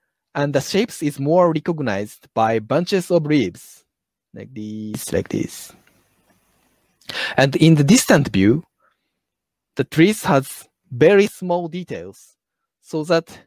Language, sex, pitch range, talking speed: Italian, male, 135-185 Hz, 120 wpm